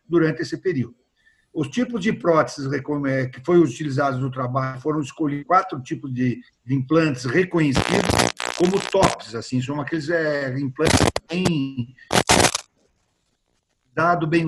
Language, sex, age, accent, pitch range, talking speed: Portuguese, male, 60-79, Brazilian, 135-185 Hz, 125 wpm